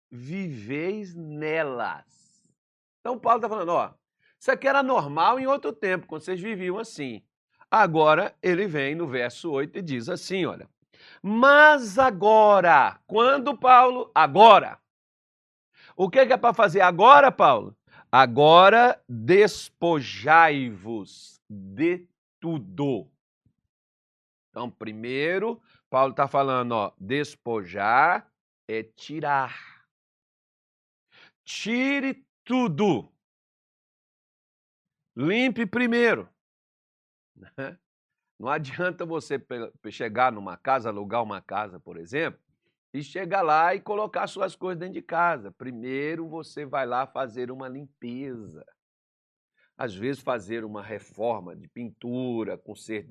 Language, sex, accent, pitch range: Portuguese, male, Brazilian, 120-200 Hz